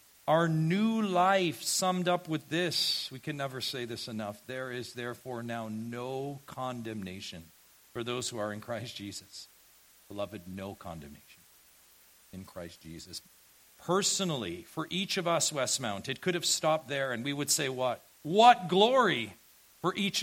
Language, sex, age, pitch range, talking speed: English, male, 50-69, 120-180 Hz, 155 wpm